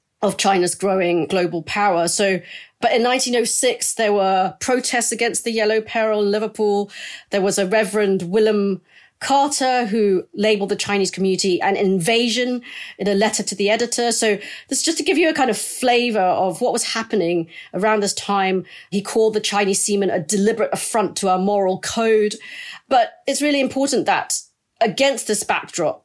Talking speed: 175 wpm